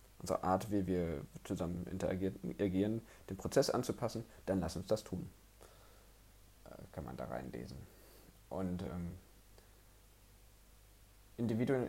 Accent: German